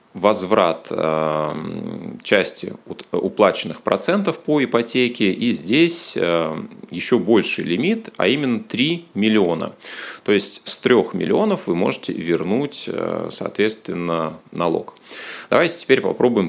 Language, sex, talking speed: Russian, male, 100 wpm